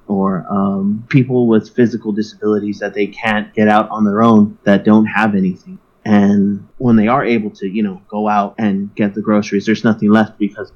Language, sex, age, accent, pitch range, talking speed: English, male, 30-49, American, 105-125 Hz, 200 wpm